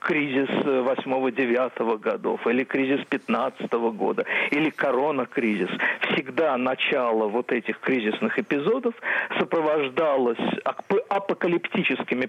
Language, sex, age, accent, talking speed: Russian, male, 50-69, native, 85 wpm